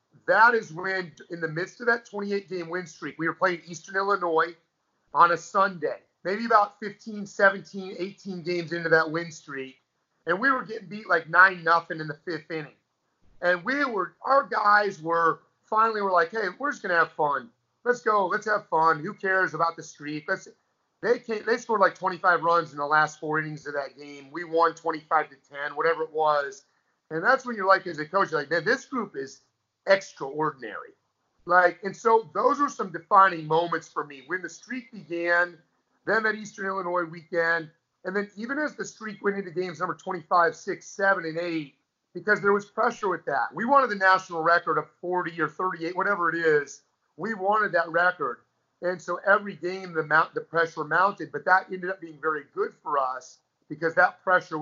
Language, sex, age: English, male, 30-49